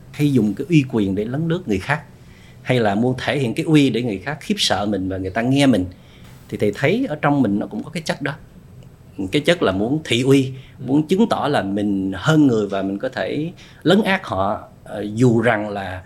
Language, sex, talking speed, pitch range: Vietnamese, male, 230 wpm, 100-145 Hz